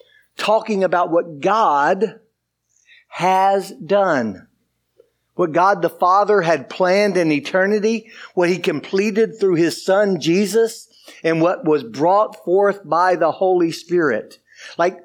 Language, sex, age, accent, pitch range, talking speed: English, male, 60-79, American, 170-215 Hz, 125 wpm